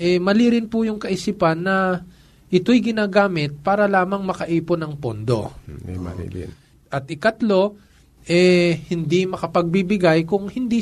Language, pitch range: Filipino, 140-190 Hz